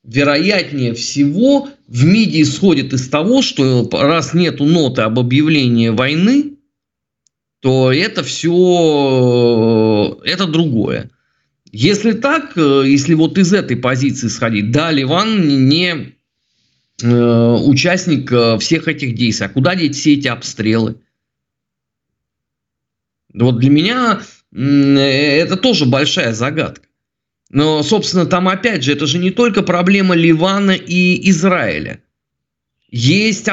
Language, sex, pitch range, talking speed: Russian, male, 130-185 Hz, 110 wpm